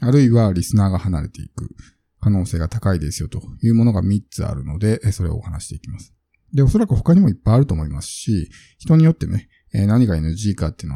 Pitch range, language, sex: 95-135 Hz, Japanese, male